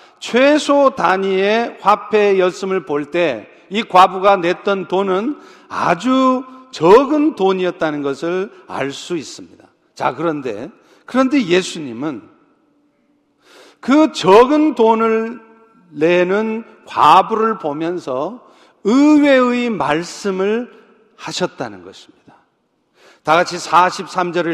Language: Korean